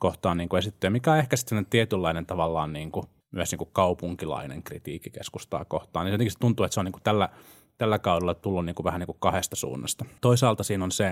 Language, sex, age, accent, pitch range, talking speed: Finnish, male, 30-49, native, 90-110 Hz, 220 wpm